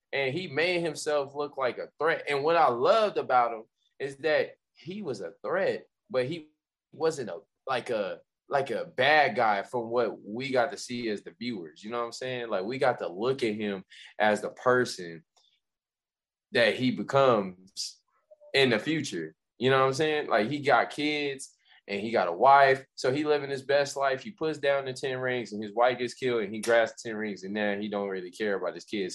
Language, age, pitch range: English, 20-39, 110-145 Hz